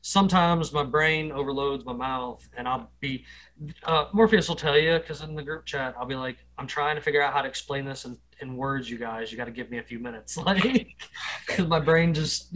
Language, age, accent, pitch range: English, 20-39, American, 125-155 Hz